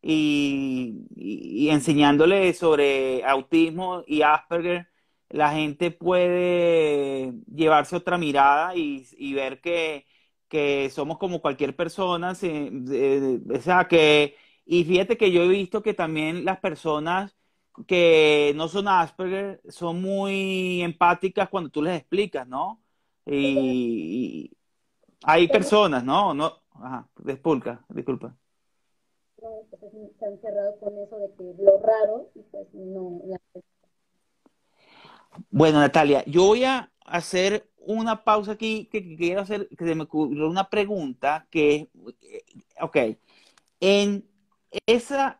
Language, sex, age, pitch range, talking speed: Spanish, male, 30-49, 155-200 Hz, 115 wpm